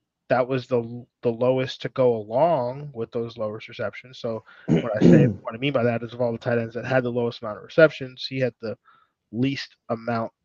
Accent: American